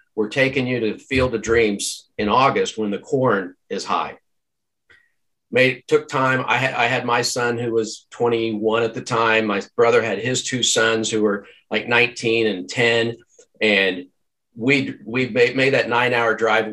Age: 50-69